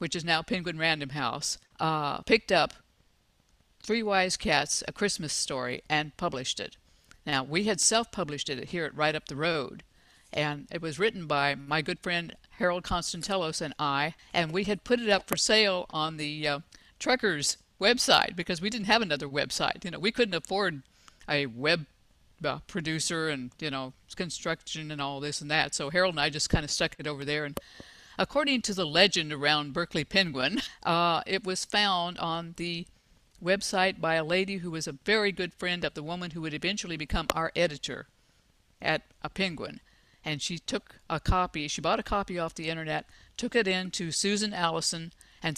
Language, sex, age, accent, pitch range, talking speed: English, female, 60-79, American, 150-185 Hz, 190 wpm